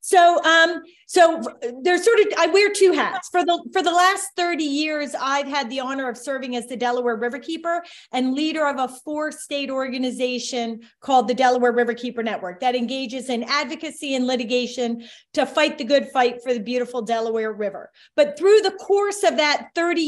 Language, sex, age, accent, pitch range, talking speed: English, female, 30-49, American, 245-305 Hz, 185 wpm